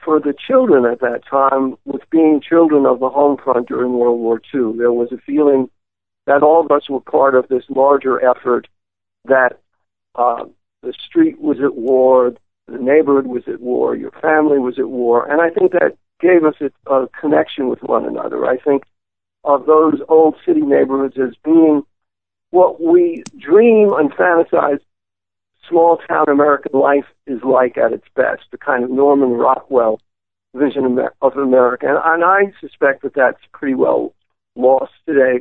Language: English